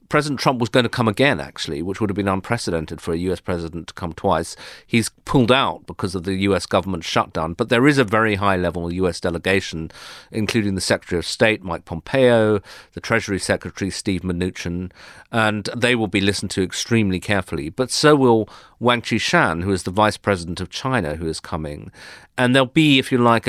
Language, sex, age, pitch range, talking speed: English, male, 40-59, 85-105 Hz, 200 wpm